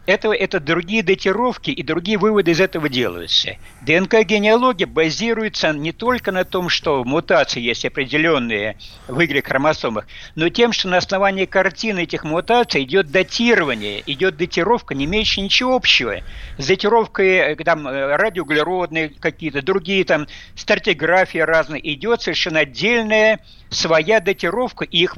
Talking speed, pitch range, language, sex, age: 125 wpm, 155-210 Hz, Russian, male, 60-79